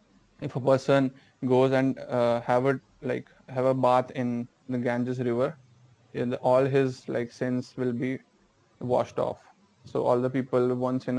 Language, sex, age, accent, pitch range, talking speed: English, male, 20-39, Indian, 120-130 Hz, 160 wpm